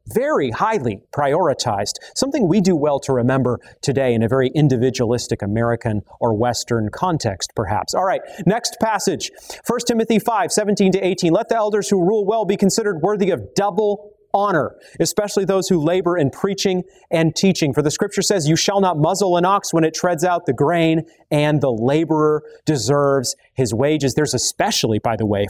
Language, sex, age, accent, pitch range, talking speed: English, male, 30-49, American, 130-195 Hz, 180 wpm